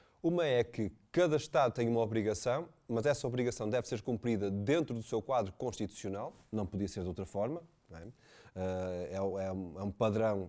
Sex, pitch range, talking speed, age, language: male, 110-145 Hz, 170 wpm, 20-39, Portuguese